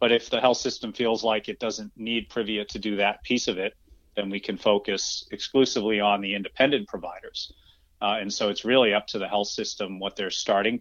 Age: 40-59